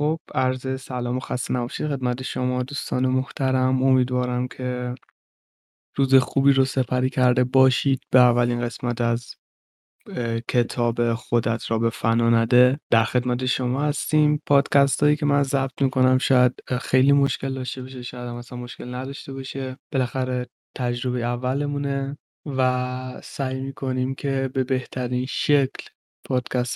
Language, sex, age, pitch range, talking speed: Persian, male, 20-39, 125-140 Hz, 130 wpm